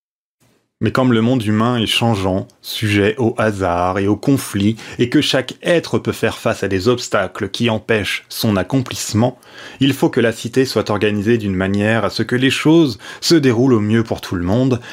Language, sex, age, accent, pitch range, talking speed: French, male, 30-49, French, 100-130 Hz, 195 wpm